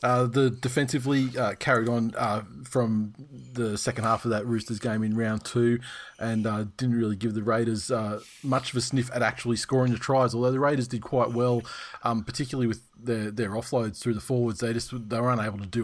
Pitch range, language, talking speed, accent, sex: 105-125 Hz, English, 215 wpm, Australian, male